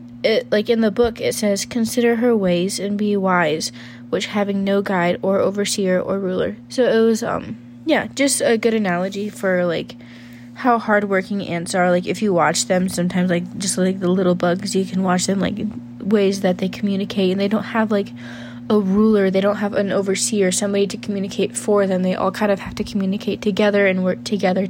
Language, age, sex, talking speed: English, 20-39, female, 205 wpm